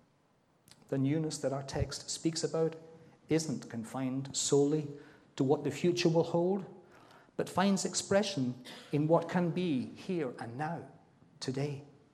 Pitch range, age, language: 140-185 Hz, 50-69, English